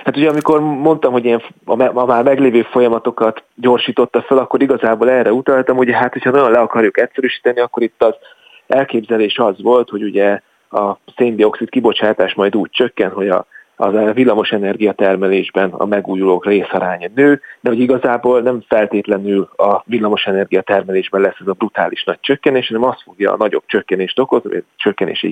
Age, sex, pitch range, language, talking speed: 30-49, male, 100-130 Hz, Hungarian, 160 wpm